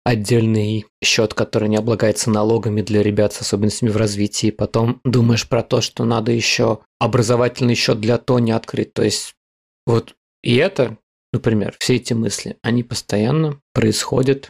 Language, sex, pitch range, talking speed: Russian, male, 110-135 Hz, 150 wpm